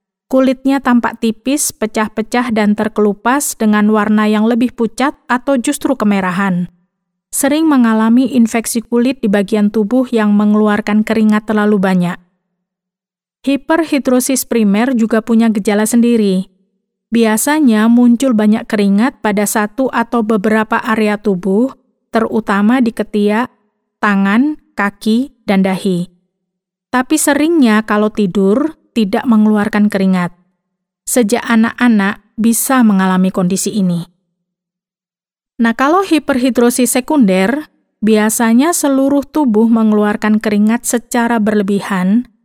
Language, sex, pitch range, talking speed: Indonesian, female, 200-240 Hz, 105 wpm